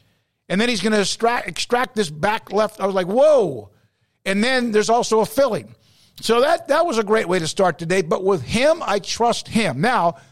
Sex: male